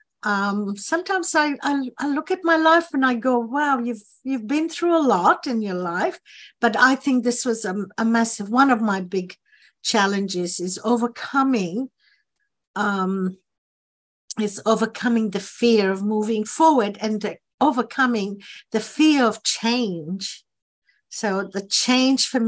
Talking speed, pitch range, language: 150 wpm, 200-270 Hz, English